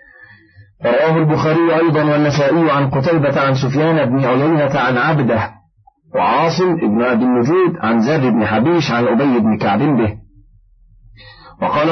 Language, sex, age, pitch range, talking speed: Arabic, male, 40-59, 115-155 Hz, 130 wpm